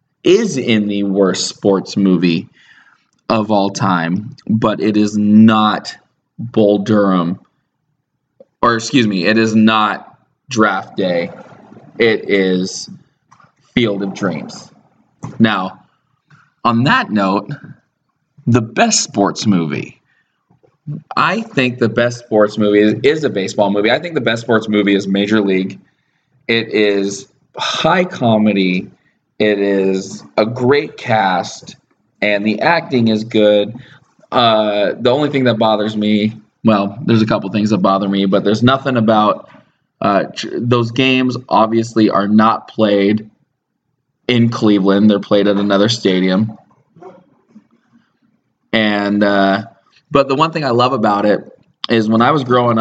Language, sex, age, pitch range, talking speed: English, male, 20-39, 100-120 Hz, 130 wpm